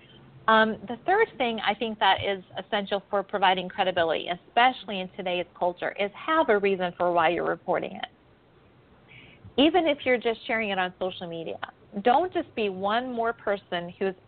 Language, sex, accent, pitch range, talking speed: English, female, American, 185-225 Hz, 170 wpm